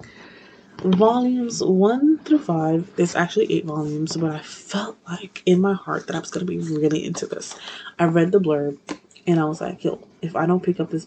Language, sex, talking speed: English, female, 205 wpm